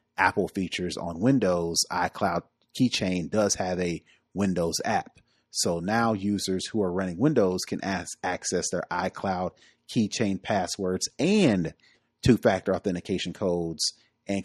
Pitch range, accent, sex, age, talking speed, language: 90-105 Hz, American, male, 30-49, 120 wpm, English